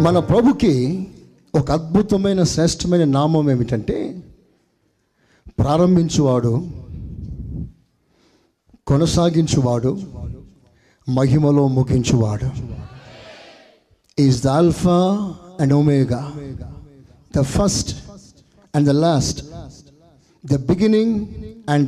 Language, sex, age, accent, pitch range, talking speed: Telugu, male, 50-69, native, 135-215 Hz, 60 wpm